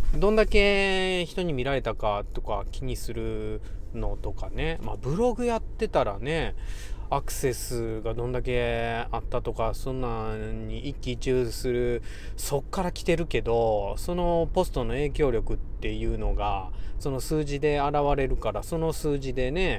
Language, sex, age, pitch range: Japanese, male, 20-39, 110-175 Hz